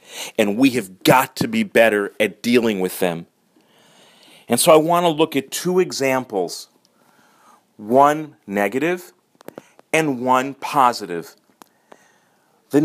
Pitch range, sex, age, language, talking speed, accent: 105-140 Hz, male, 40-59, English, 120 wpm, American